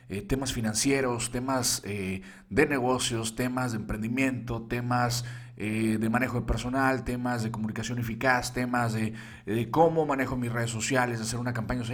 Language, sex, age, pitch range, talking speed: Spanish, male, 40-59, 110-125 Hz, 170 wpm